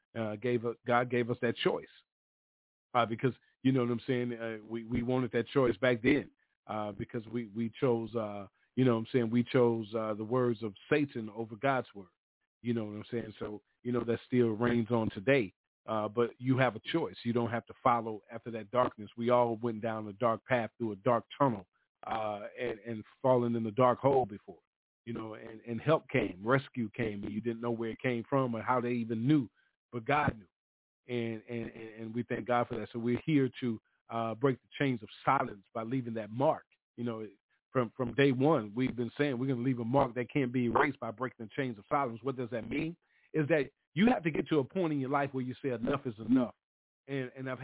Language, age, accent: English, 40-59, American